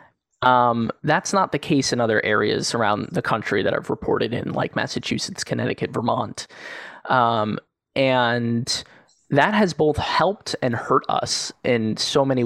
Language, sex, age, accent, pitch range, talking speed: English, male, 20-39, American, 125-155 Hz, 150 wpm